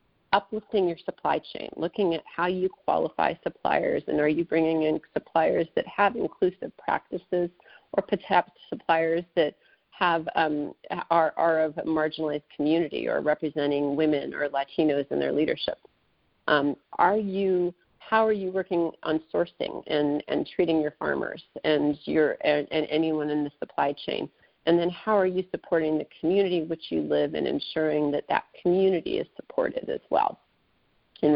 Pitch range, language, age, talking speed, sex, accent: 155-185 Hz, English, 40-59, 165 wpm, female, American